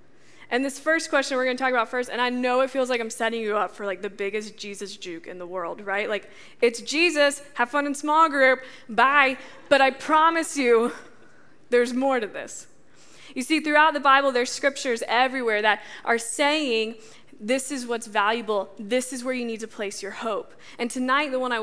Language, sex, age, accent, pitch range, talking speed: English, female, 20-39, American, 220-270 Hz, 210 wpm